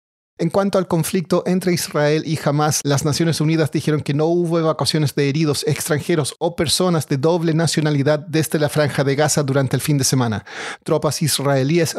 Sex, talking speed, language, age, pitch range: male, 180 wpm, Spanish, 40-59, 140-170 Hz